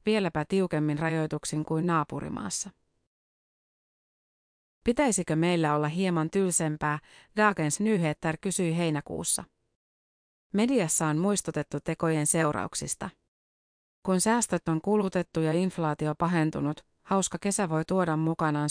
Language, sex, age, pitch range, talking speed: Finnish, female, 30-49, 150-185 Hz, 100 wpm